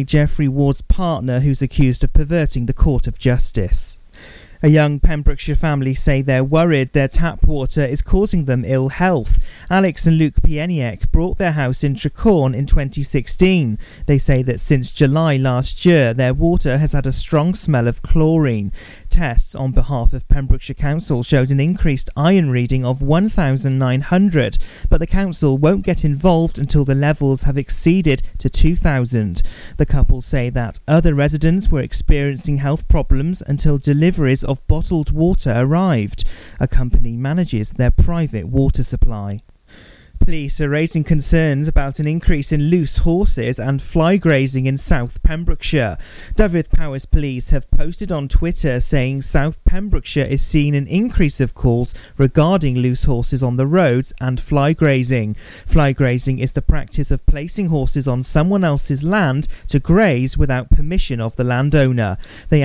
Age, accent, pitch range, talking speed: 40-59, British, 125-160 Hz, 155 wpm